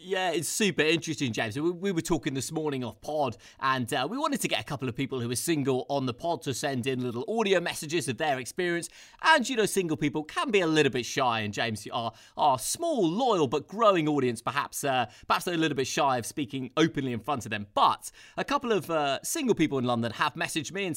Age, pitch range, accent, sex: 30-49, 125-170 Hz, British, male